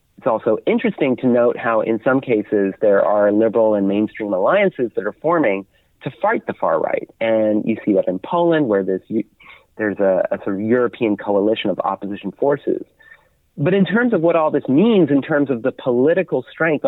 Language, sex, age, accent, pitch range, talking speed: Finnish, male, 40-59, American, 105-140 Hz, 195 wpm